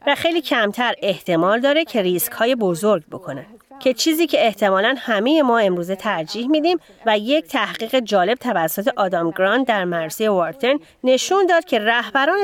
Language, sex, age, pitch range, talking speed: Persian, female, 30-49, 200-290 Hz, 160 wpm